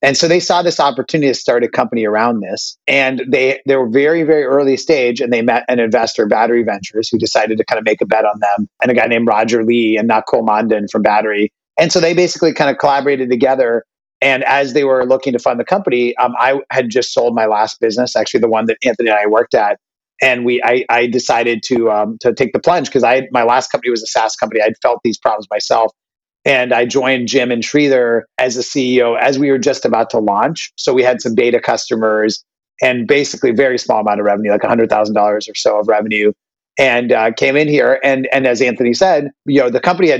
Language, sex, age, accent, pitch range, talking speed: English, male, 30-49, American, 115-140 Hz, 235 wpm